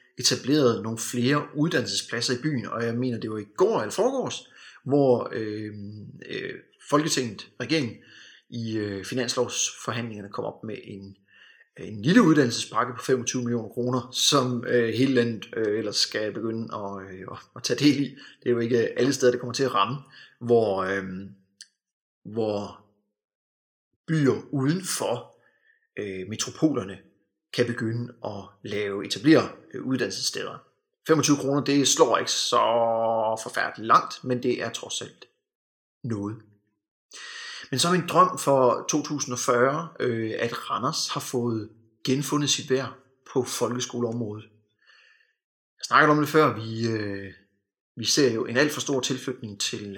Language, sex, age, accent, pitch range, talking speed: Danish, male, 30-49, native, 110-145 Hz, 140 wpm